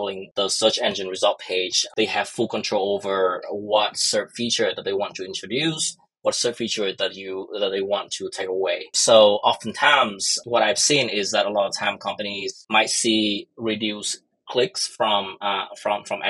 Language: English